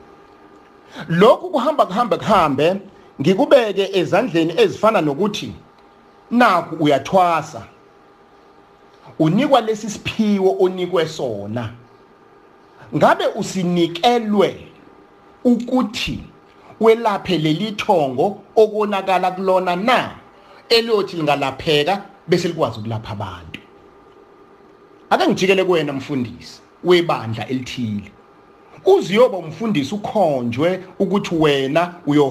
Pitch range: 135-200 Hz